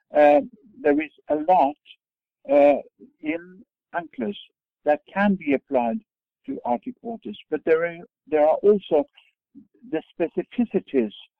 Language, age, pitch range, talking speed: English, 60-79, 145-235 Hz, 120 wpm